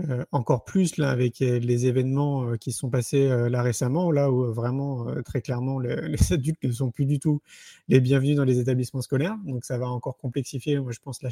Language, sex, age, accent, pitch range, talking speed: French, male, 30-49, French, 130-165 Hz, 240 wpm